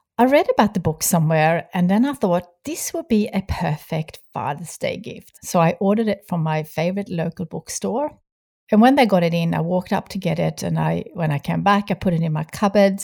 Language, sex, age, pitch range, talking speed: English, female, 60-79, 160-205 Hz, 235 wpm